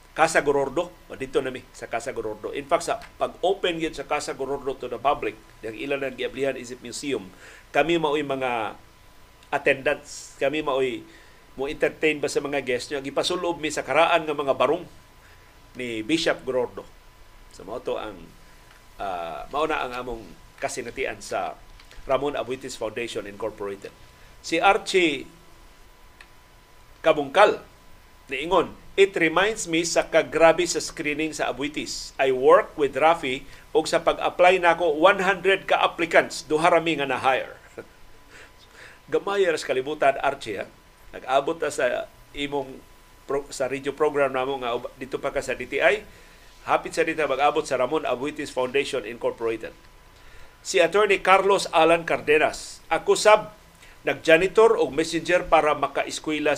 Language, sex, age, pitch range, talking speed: Filipino, male, 40-59, 135-175 Hz, 135 wpm